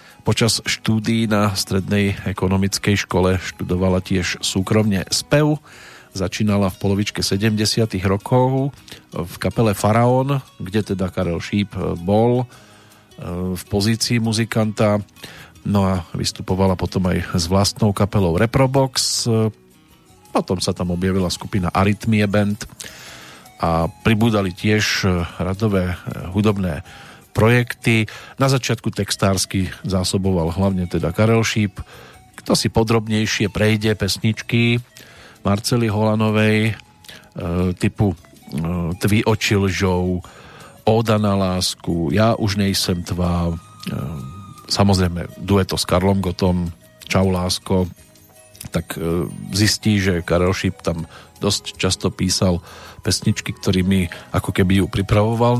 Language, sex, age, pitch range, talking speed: Slovak, male, 40-59, 95-110 Hz, 110 wpm